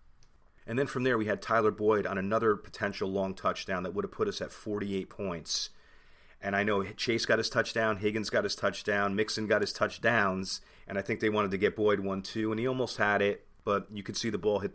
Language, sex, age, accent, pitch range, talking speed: English, male, 30-49, American, 90-105 Hz, 230 wpm